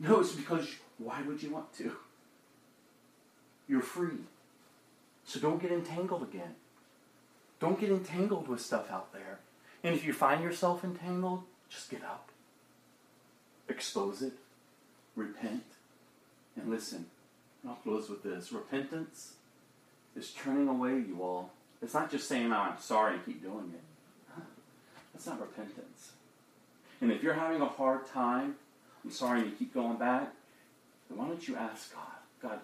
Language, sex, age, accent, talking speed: English, male, 40-59, American, 145 wpm